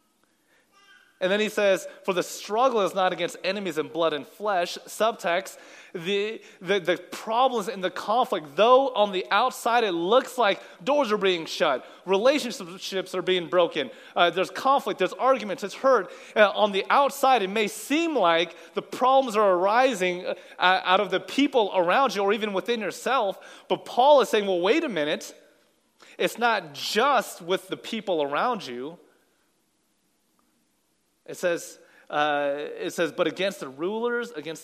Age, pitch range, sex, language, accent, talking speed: 30-49, 175-225 Hz, male, English, American, 165 wpm